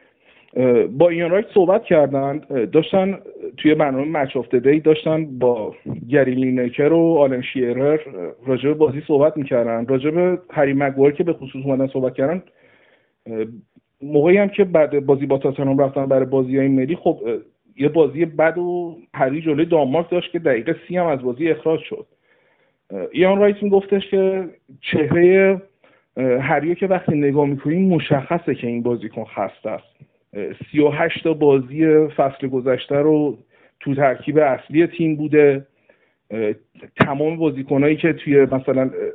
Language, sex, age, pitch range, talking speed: Persian, male, 50-69, 135-170 Hz, 130 wpm